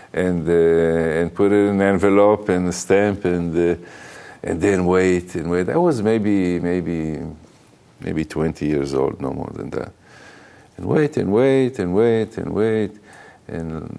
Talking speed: 165 wpm